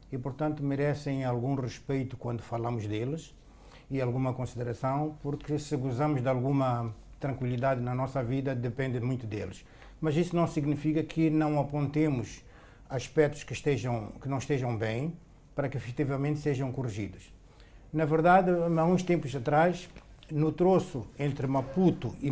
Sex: male